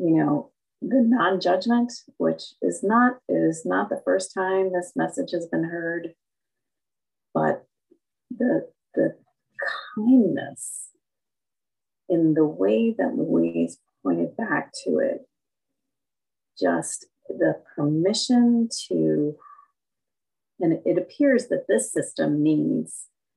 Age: 30-49